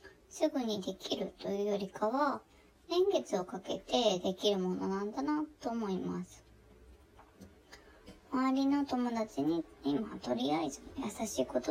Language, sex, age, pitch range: Japanese, male, 20-39, 180-290 Hz